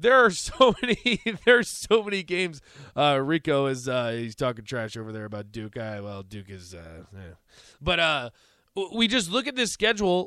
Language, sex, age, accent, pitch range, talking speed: English, male, 20-39, American, 170-255 Hz, 195 wpm